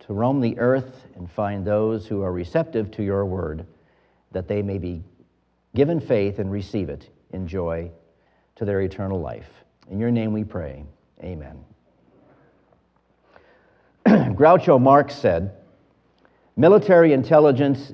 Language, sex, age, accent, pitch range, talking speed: English, male, 50-69, American, 90-130 Hz, 125 wpm